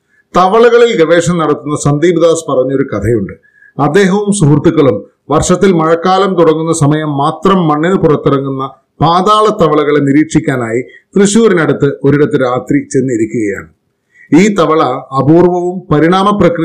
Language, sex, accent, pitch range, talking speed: Malayalam, male, native, 135-170 Hz, 95 wpm